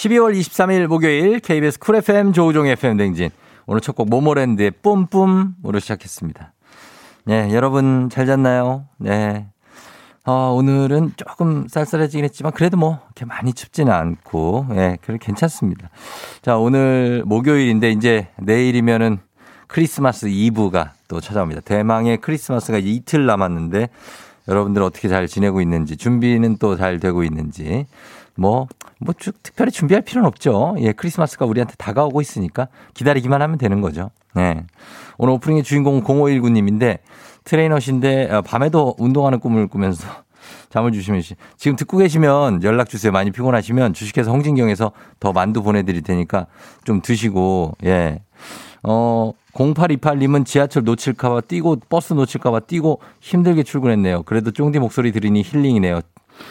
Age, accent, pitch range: 50-69, native, 105-145 Hz